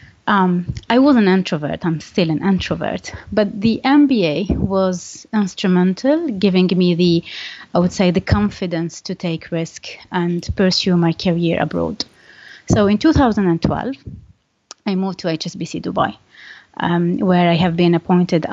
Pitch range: 170-205 Hz